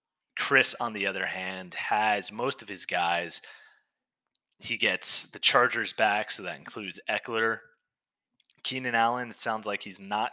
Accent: American